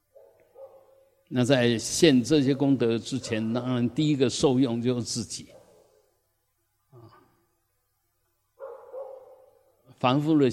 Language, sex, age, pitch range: Chinese, male, 60-79, 100-125 Hz